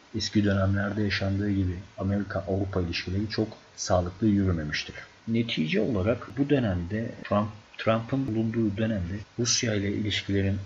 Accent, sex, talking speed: native, male, 115 wpm